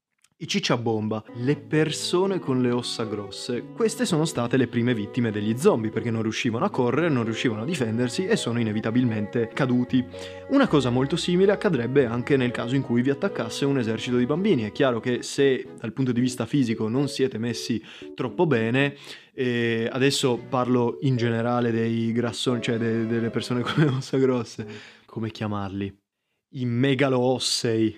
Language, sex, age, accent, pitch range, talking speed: Italian, male, 20-39, native, 115-135 Hz, 165 wpm